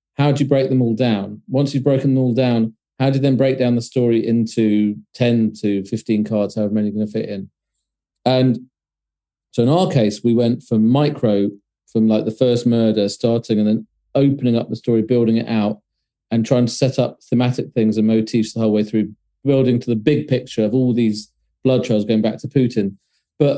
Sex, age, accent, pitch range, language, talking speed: male, 40-59, British, 105-130 Hz, English, 215 wpm